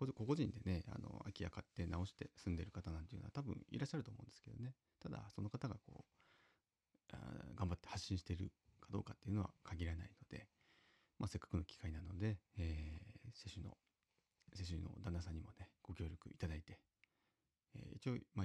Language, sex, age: Japanese, male, 30-49